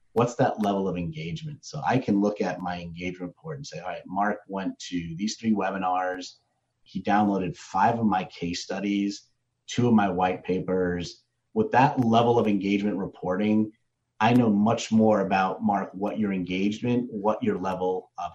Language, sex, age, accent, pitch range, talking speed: English, male, 30-49, American, 90-115 Hz, 175 wpm